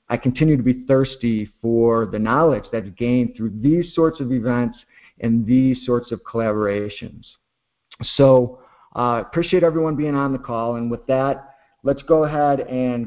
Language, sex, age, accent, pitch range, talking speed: English, male, 50-69, American, 120-150 Hz, 165 wpm